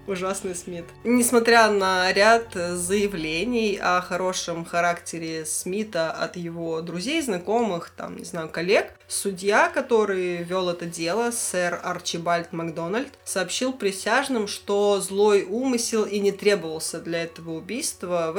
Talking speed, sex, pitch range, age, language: 125 wpm, female, 175-210 Hz, 20-39, Russian